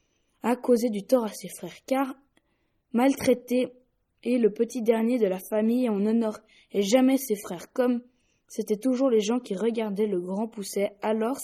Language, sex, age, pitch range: French, female, 20-39, 210-250 Hz